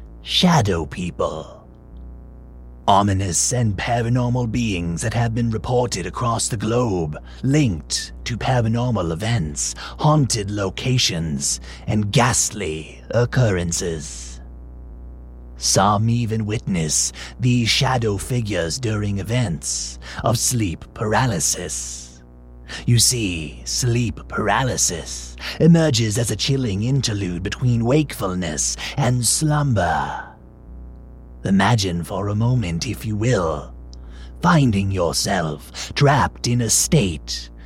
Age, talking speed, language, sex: 30-49, 95 wpm, English, male